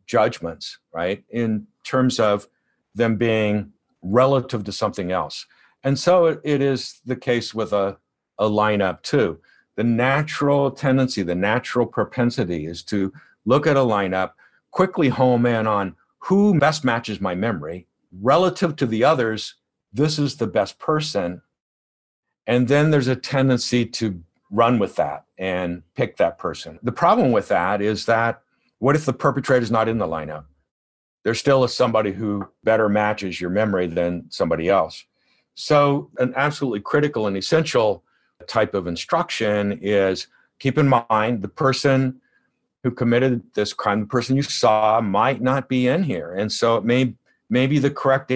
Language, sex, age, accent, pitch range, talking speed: English, male, 50-69, American, 105-135 Hz, 160 wpm